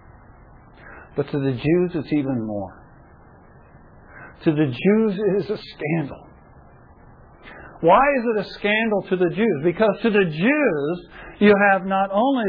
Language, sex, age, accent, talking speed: English, male, 60-79, American, 145 wpm